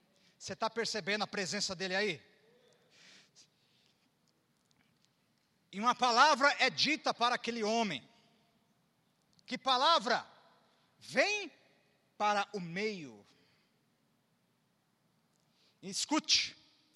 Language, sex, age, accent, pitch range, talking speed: Portuguese, male, 50-69, Brazilian, 200-270 Hz, 80 wpm